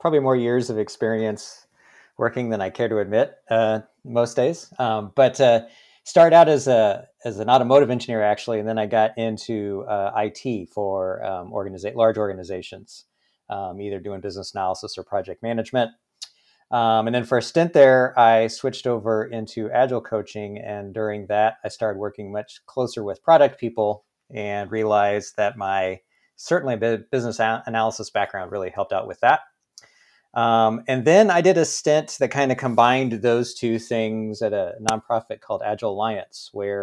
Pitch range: 105-125 Hz